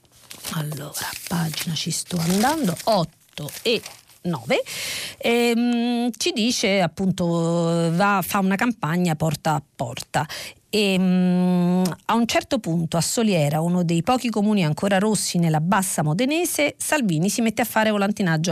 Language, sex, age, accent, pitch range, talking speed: Italian, female, 40-59, native, 165-215 Hz, 135 wpm